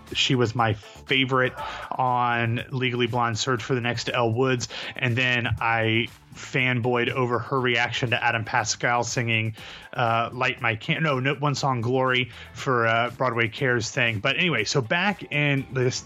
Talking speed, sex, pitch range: 165 wpm, male, 120-145 Hz